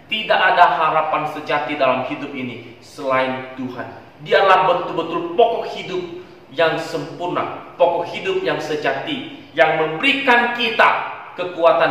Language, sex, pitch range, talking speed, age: Indonesian, male, 160-210 Hz, 115 wpm, 30-49